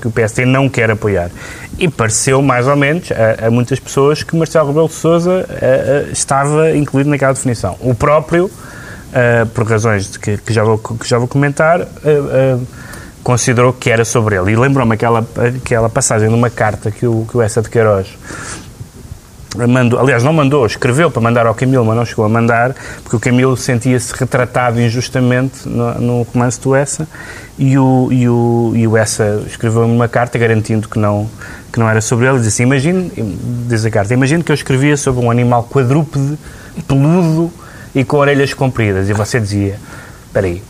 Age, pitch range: 20-39, 115-140 Hz